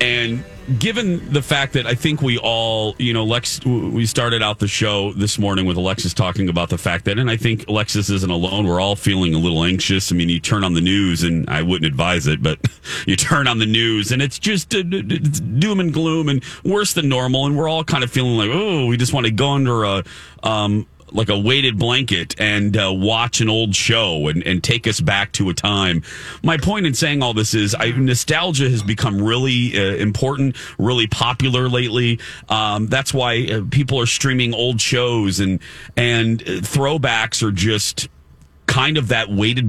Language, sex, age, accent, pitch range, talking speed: English, male, 40-59, American, 105-140 Hz, 205 wpm